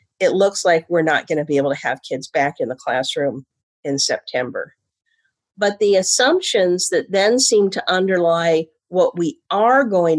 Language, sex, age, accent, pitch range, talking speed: English, female, 50-69, American, 175-225 Hz, 175 wpm